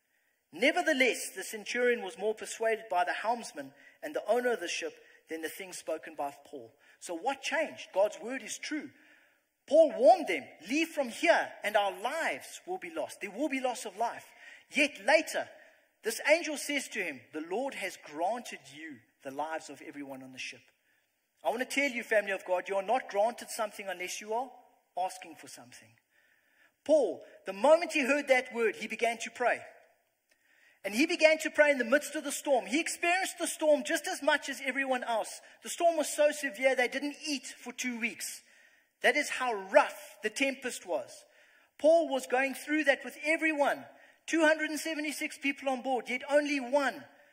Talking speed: 190 wpm